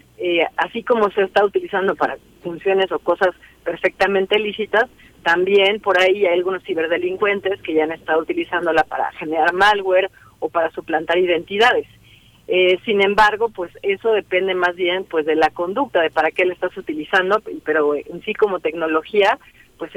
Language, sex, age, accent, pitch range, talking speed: Spanish, female, 40-59, Mexican, 175-220 Hz, 160 wpm